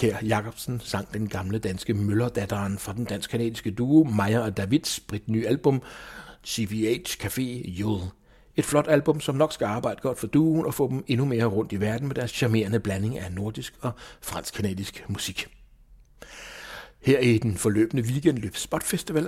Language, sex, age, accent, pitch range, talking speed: English, male, 60-79, Danish, 105-135 Hz, 160 wpm